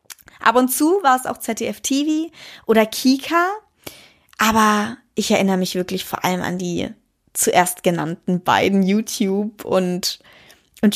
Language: German